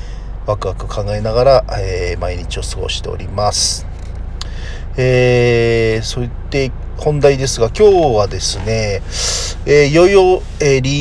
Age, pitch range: 40-59, 95-120 Hz